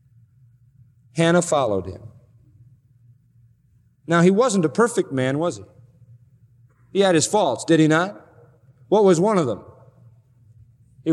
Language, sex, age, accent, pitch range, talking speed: English, male, 40-59, American, 125-200 Hz, 130 wpm